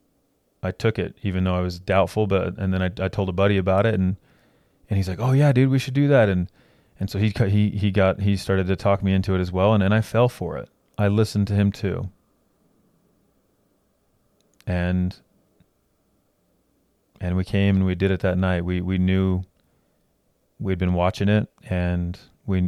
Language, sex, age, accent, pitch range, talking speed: English, male, 30-49, American, 90-105 Hz, 200 wpm